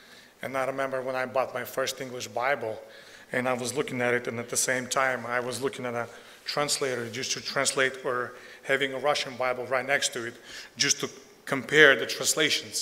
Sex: male